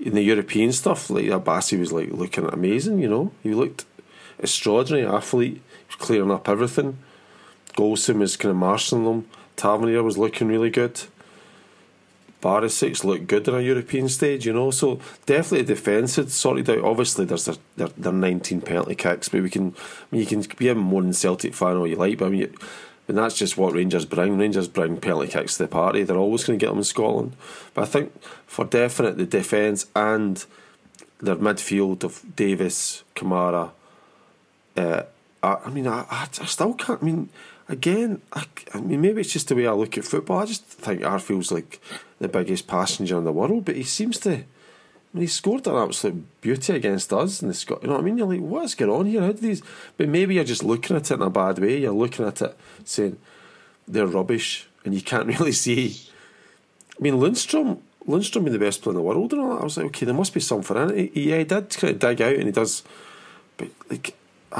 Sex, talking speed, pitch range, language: male, 215 wpm, 95-160 Hz, English